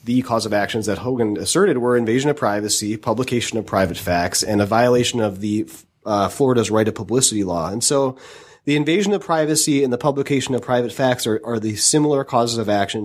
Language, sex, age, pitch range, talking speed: English, male, 30-49, 105-135 Hz, 205 wpm